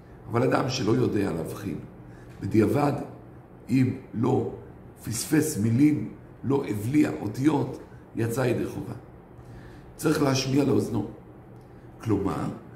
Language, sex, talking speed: Hebrew, male, 95 wpm